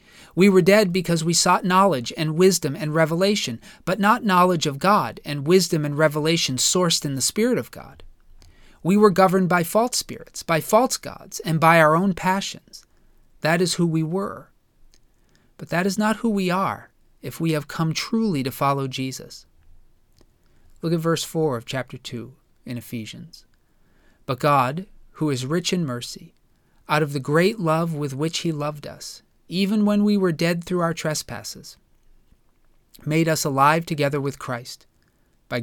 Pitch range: 140-180 Hz